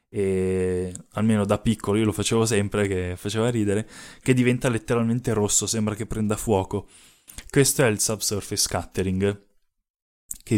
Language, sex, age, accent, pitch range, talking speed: Italian, male, 20-39, native, 105-120 Hz, 140 wpm